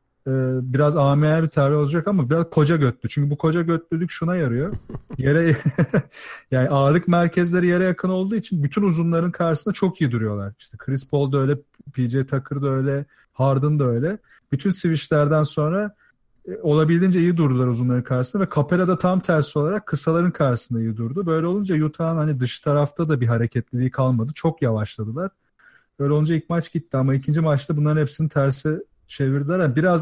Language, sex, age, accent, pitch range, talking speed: Turkish, male, 40-59, native, 130-165 Hz, 170 wpm